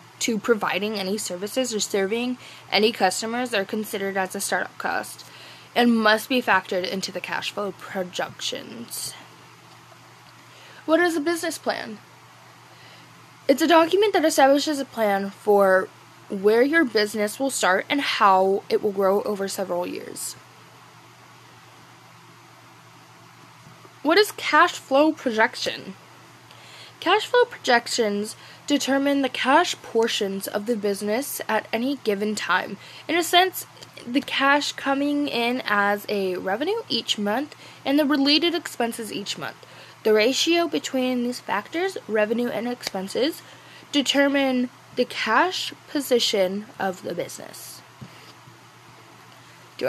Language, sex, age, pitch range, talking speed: English, female, 10-29, 205-295 Hz, 125 wpm